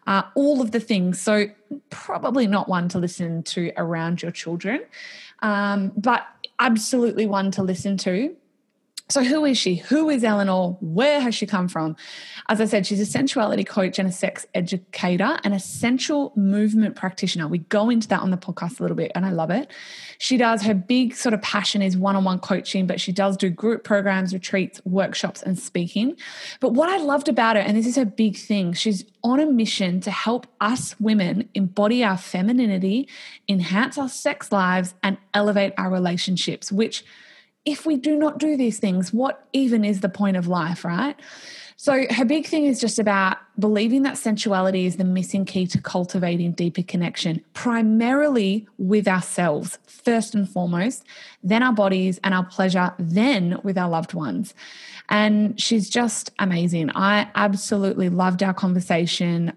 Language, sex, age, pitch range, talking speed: English, female, 20-39, 185-235 Hz, 175 wpm